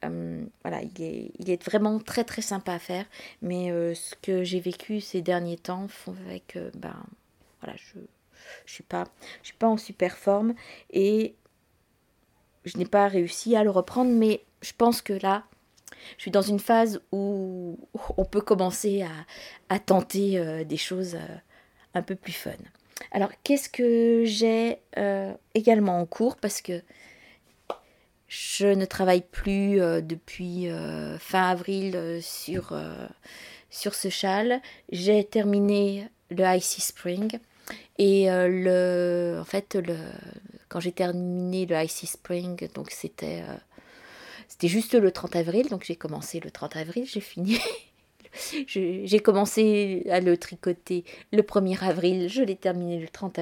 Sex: female